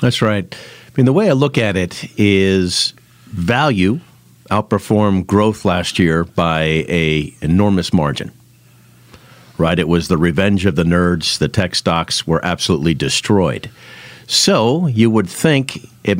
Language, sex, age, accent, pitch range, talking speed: English, male, 50-69, American, 85-110 Hz, 145 wpm